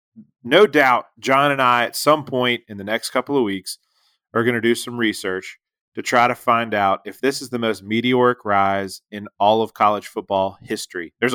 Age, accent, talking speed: 30-49, American, 205 wpm